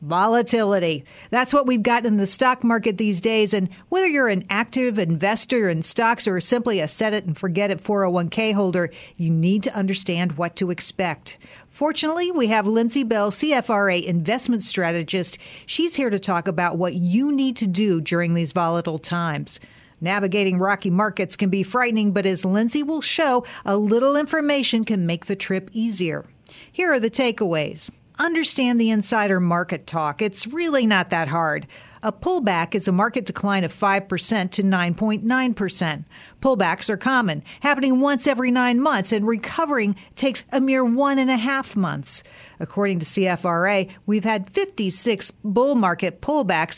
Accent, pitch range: American, 180-240 Hz